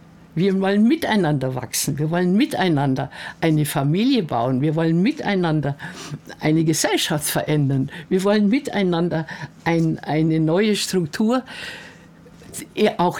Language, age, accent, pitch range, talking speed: German, 60-79, German, 145-185 Hz, 105 wpm